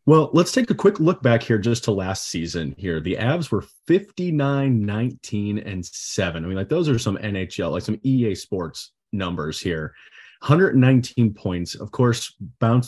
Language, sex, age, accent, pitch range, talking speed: English, male, 30-49, American, 95-120 Hz, 165 wpm